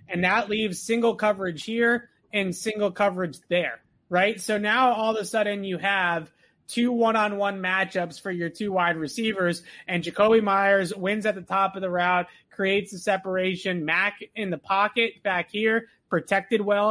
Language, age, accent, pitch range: English, 30-49, American, 175-210 Hz